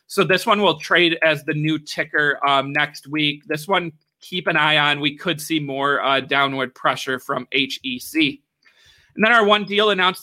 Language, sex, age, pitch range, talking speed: English, male, 30-49, 145-180 Hz, 195 wpm